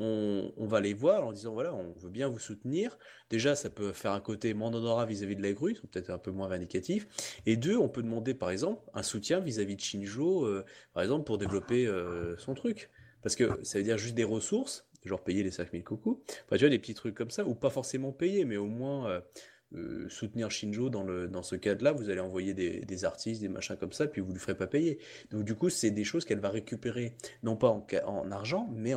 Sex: male